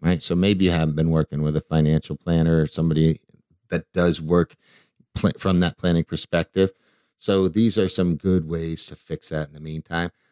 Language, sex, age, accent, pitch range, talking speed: English, male, 50-69, American, 85-115 Hz, 185 wpm